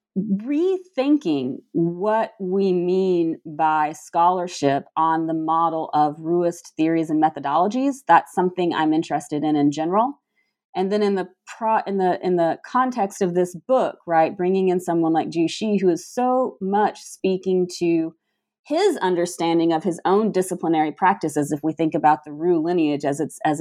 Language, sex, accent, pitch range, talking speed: English, female, American, 155-195 Hz, 165 wpm